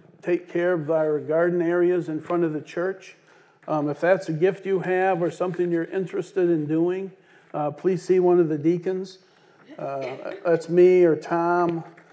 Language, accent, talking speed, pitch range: English, American, 180 wpm, 160-180 Hz